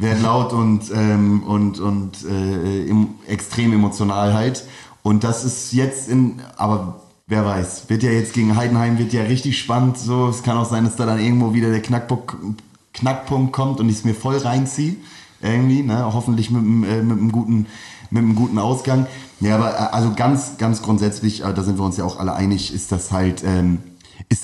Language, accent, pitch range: German, German, 100-115 Hz